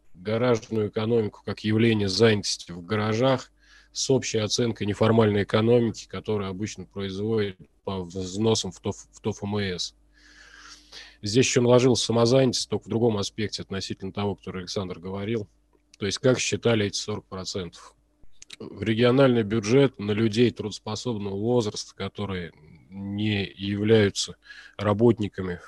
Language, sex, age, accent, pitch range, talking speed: Russian, male, 20-39, native, 100-120 Hz, 120 wpm